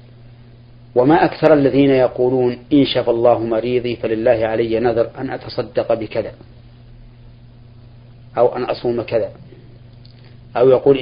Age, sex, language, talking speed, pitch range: 40-59, male, Arabic, 110 wpm, 120-125 Hz